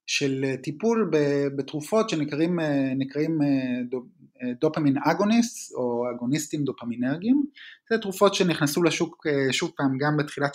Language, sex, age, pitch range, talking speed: Hebrew, male, 20-39, 130-185 Hz, 90 wpm